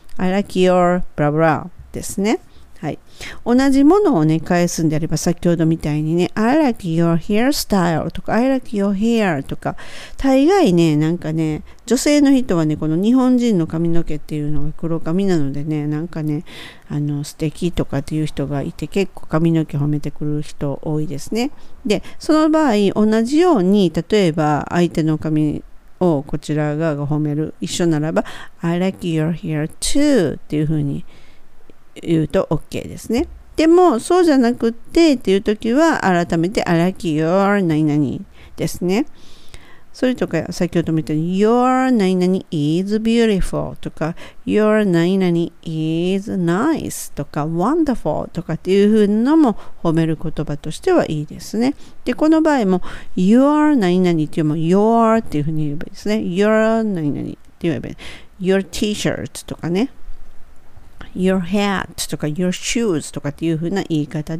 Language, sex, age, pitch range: Japanese, female, 50-69, 155-220 Hz